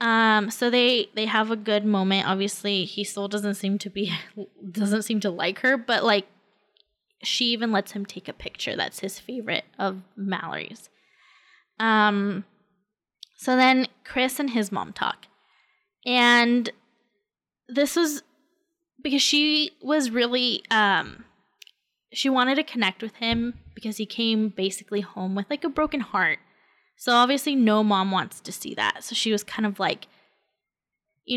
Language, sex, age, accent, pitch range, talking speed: English, female, 10-29, American, 210-260 Hz, 155 wpm